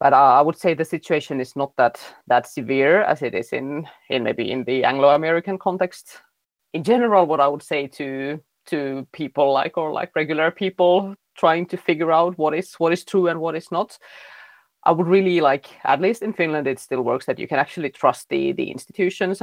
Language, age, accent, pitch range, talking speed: Finnish, 30-49, native, 140-185 Hz, 205 wpm